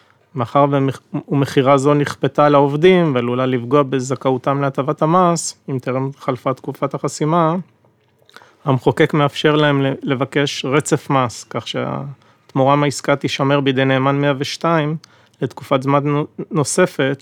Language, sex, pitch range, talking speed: Hebrew, male, 130-145 Hz, 110 wpm